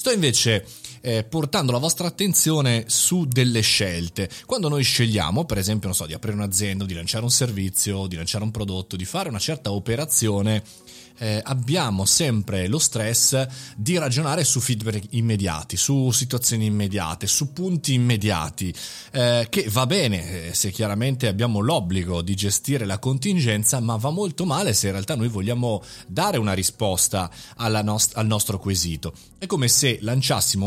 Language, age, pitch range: Italian, 30-49, 105-140 Hz